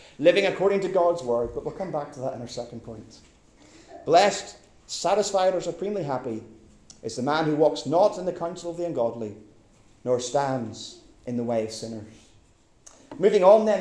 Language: English